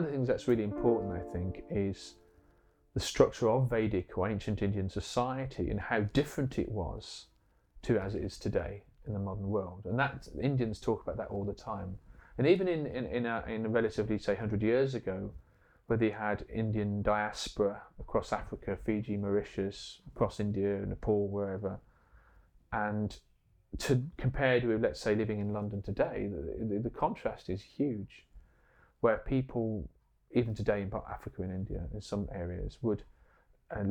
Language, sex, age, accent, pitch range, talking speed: English, male, 30-49, British, 100-110 Hz, 170 wpm